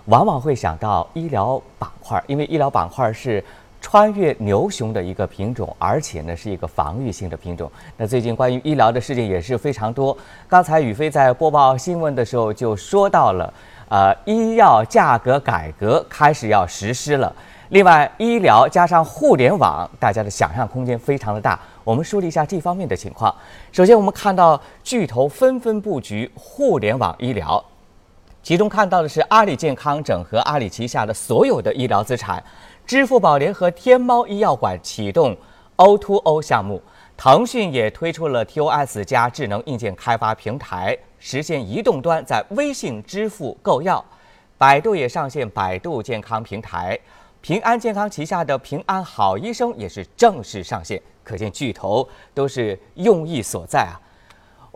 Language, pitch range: Chinese, 110-180 Hz